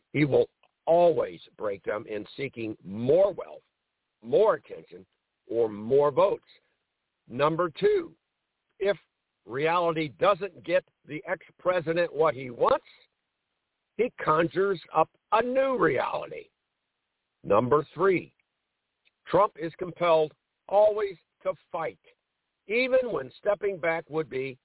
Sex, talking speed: male, 110 wpm